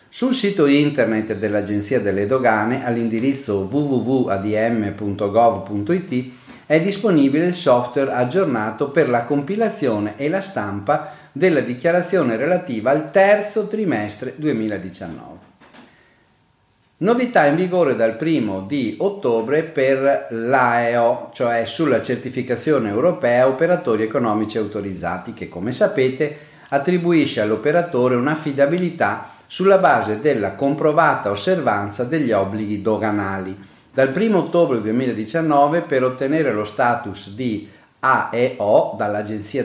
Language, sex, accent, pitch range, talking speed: Italian, male, native, 110-160 Hz, 100 wpm